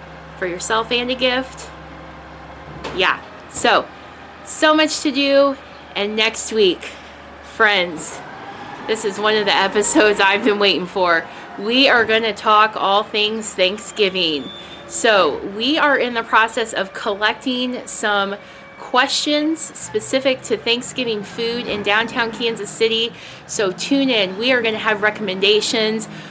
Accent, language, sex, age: American, English, female, 20-39